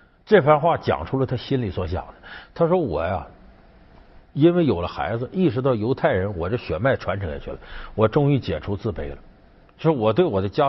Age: 50-69